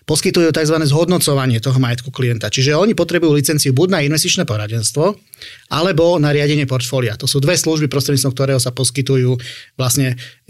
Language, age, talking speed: Slovak, 30-49, 155 wpm